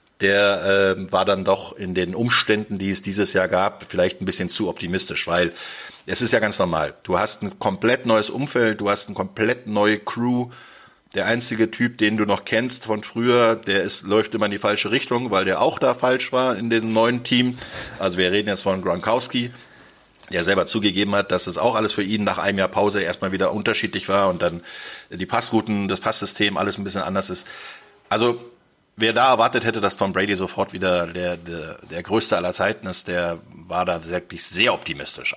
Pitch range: 95-120 Hz